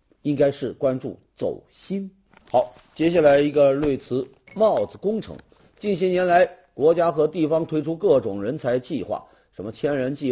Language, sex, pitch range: Chinese, male, 135-205 Hz